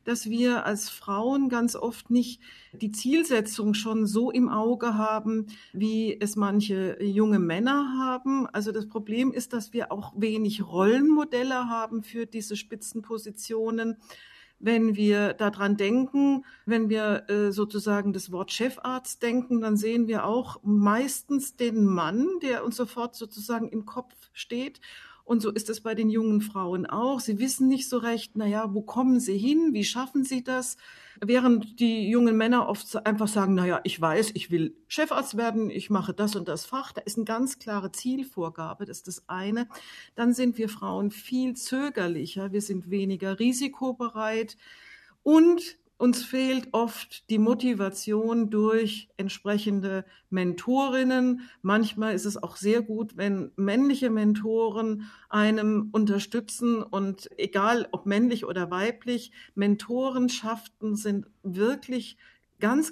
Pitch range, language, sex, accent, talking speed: 205-245 Hz, German, female, German, 145 wpm